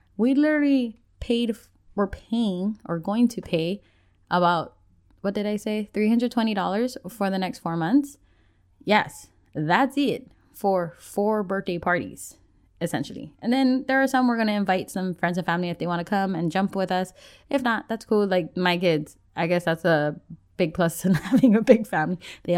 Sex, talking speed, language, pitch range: female, 185 wpm, English, 170-215 Hz